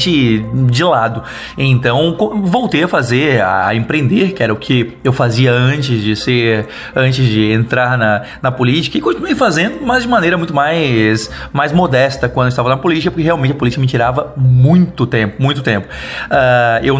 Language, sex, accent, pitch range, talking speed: Portuguese, male, Brazilian, 120-150 Hz, 175 wpm